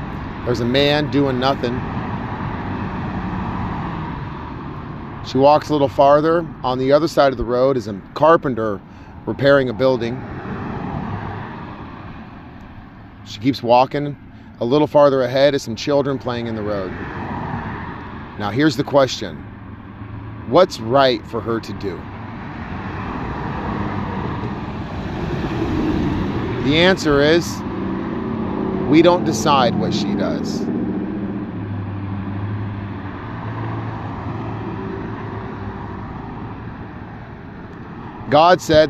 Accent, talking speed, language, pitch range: American, 90 wpm, English, 105-140 Hz